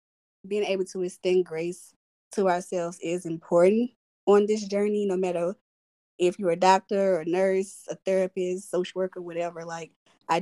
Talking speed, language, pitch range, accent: 160 wpm, English, 170-190 Hz, American